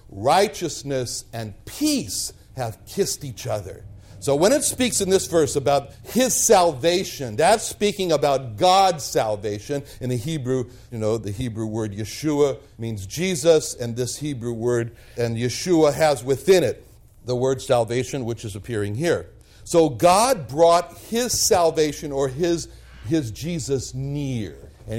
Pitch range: 115-170 Hz